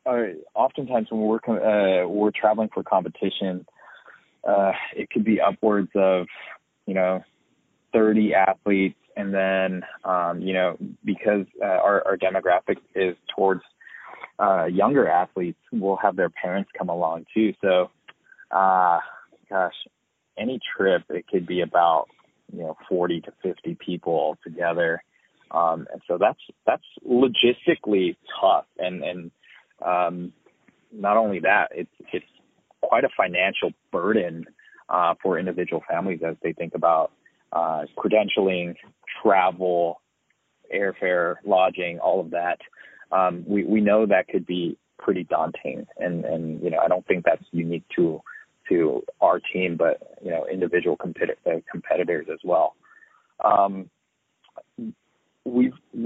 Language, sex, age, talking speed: English, male, 20-39, 135 wpm